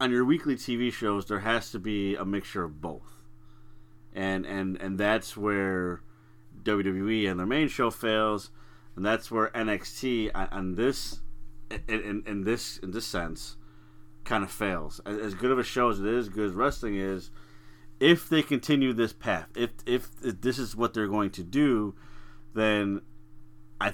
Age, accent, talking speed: 30-49, American, 170 wpm